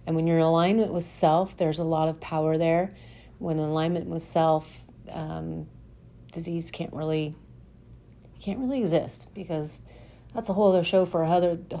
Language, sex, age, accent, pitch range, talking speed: English, female, 40-59, American, 150-175 Hz, 175 wpm